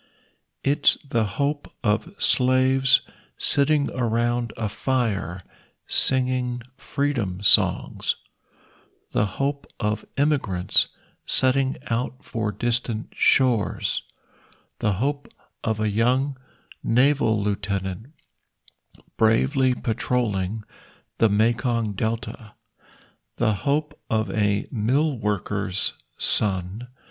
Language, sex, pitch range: Thai, male, 105-130 Hz